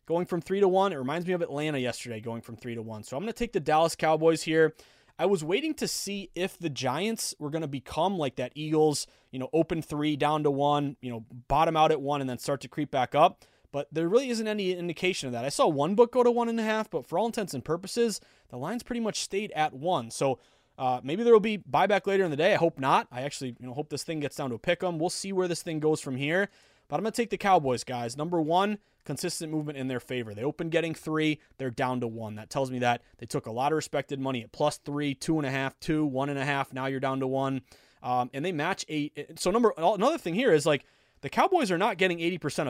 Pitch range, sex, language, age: 135-185 Hz, male, English, 20-39